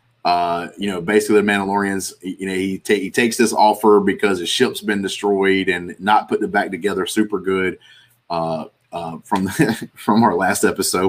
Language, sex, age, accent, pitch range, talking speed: English, male, 30-49, American, 95-115 Hz, 190 wpm